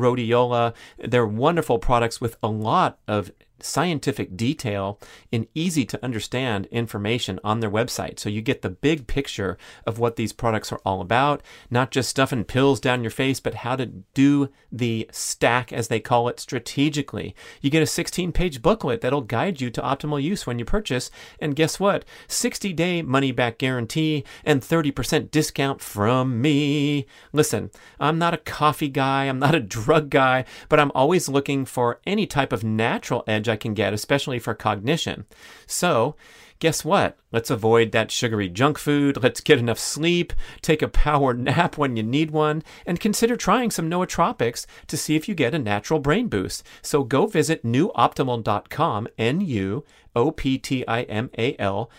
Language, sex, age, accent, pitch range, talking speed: English, male, 40-59, American, 115-150 Hz, 165 wpm